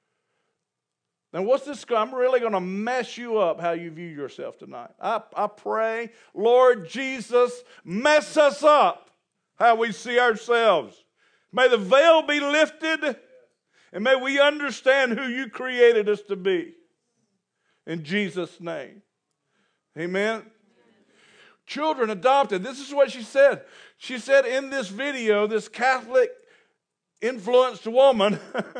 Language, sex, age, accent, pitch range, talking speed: English, male, 50-69, American, 215-280 Hz, 130 wpm